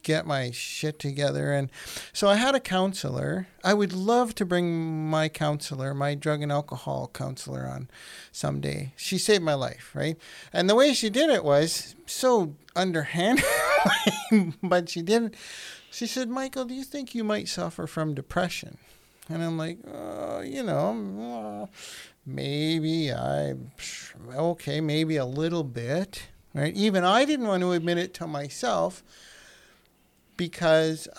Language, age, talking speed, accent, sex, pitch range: English, 50-69, 145 wpm, American, male, 145-190 Hz